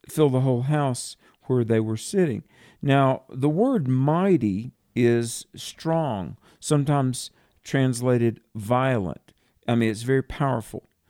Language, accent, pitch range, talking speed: English, American, 115-145 Hz, 120 wpm